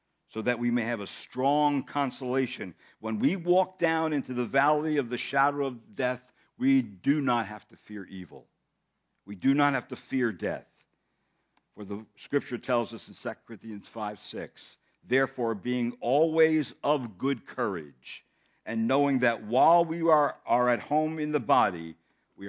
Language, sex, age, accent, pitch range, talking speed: English, male, 60-79, American, 95-130 Hz, 170 wpm